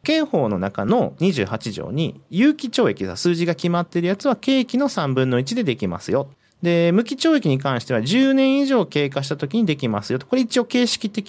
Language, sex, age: Japanese, male, 40-59